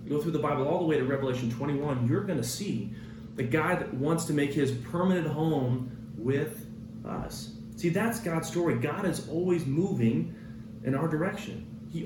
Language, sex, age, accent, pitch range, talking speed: English, male, 40-59, American, 115-160 Hz, 180 wpm